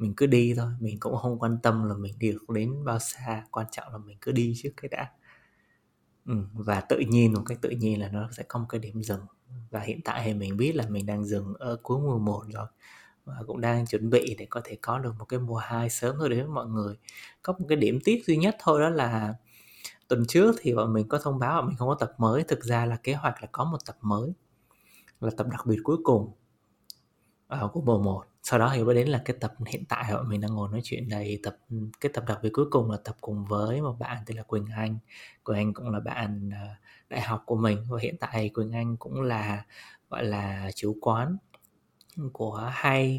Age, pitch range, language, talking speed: 20-39, 105-125 Hz, Vietnamese, 245 wpm